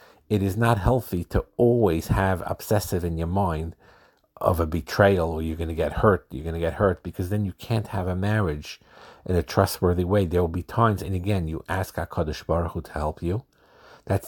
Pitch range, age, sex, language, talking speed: 85-105 Hz, 50-69, male, English, 215 wpm